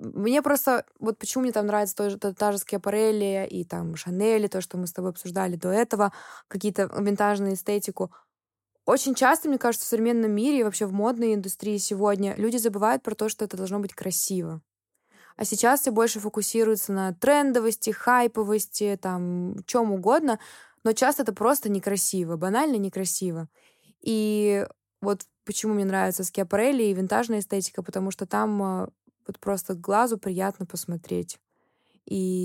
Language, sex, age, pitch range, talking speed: Russian, female, 20-39, 190-220 Hz, 155 wpm